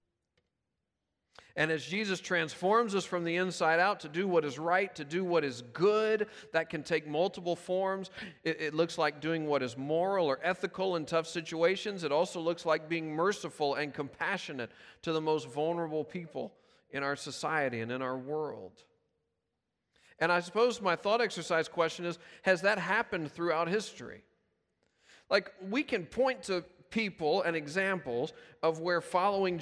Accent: American